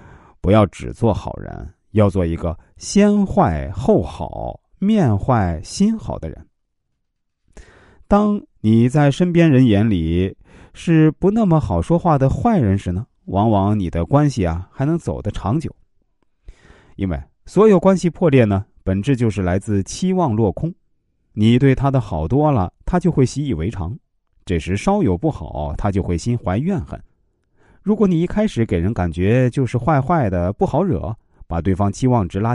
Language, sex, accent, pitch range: Chinese, male, native, 90-140 Hz